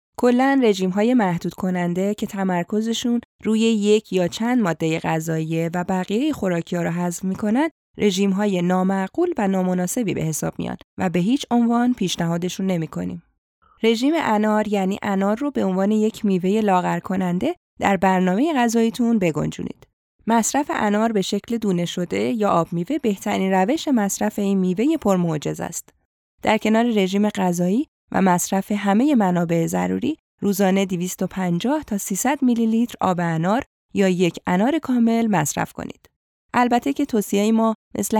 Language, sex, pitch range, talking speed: Persian, female, 180-230 Hz, 140 wpm